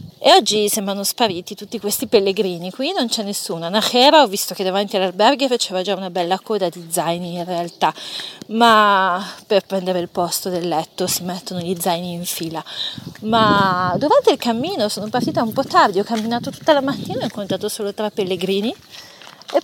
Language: Italian